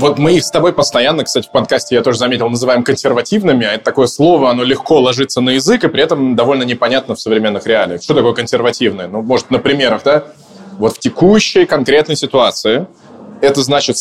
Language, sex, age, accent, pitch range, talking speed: Russian, male, 20-39, native, 125-160 Hz, 195 wpm